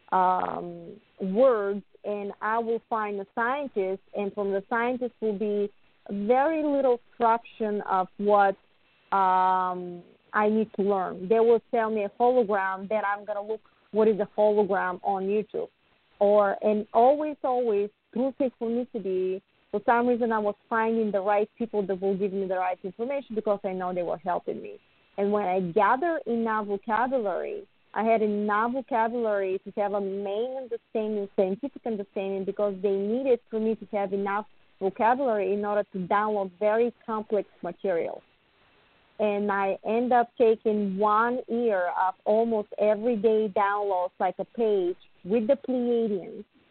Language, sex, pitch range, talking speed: English, female, 200-230 Hz, 155 wpm